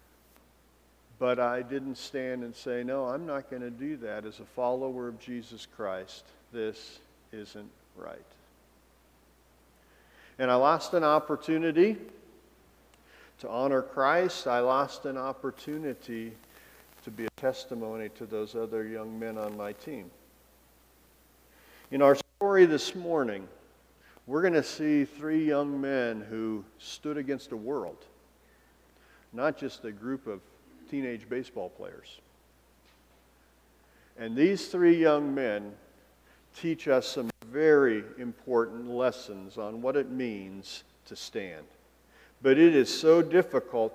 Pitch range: 110-145 Hz